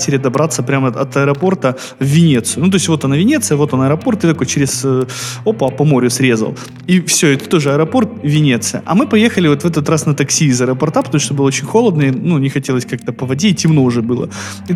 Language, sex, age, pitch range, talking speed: Russian, male, 20-39, 125-160 Hz, 230 wpm